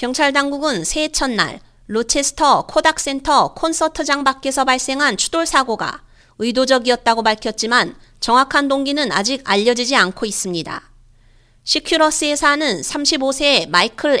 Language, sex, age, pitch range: Korean, female, 30-49, 230-285 Hz